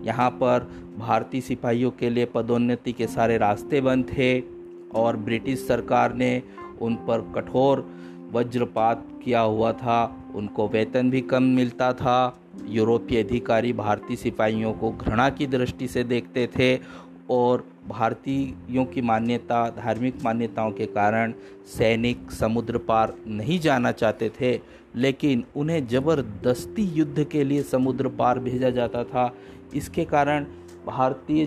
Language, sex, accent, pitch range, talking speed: Hindi, male, native, 115-130 Hz, 130 wpm